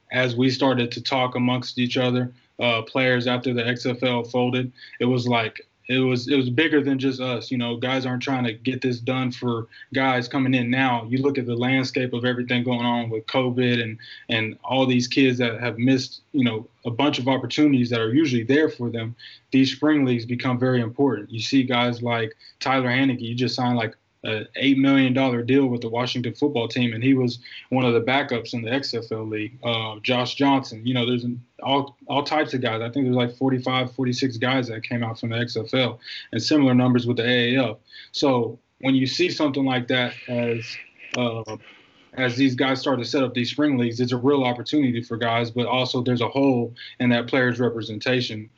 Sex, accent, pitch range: male, American, 120-130 Hz